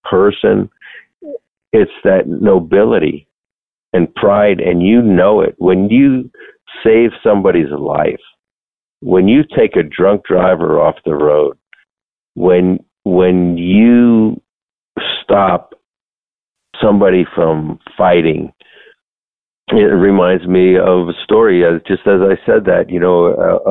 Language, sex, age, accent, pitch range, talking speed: English, male, 50-69, American, 85-105 Hz, 115 wpm